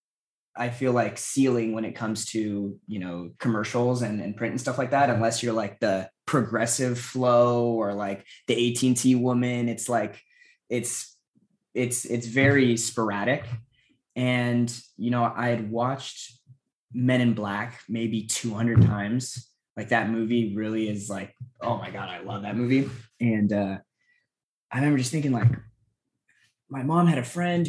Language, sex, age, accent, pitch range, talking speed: English, male, 20-39, American, 110-135 Hz, 160 wpm